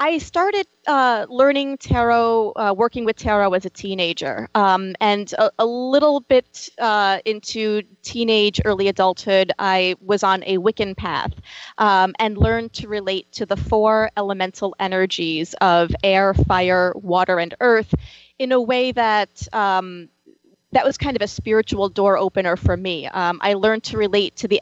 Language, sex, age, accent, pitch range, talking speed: English, female, 30-49, American, 190-230 Hz, 165 wpm